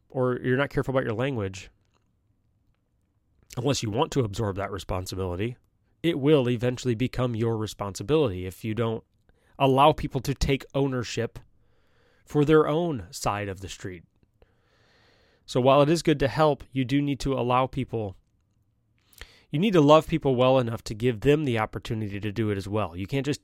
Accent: American